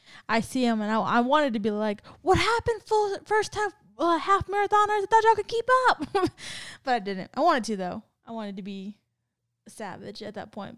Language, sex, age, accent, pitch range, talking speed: English, female, 10-29, American, 200-245 Hz, 225 wpm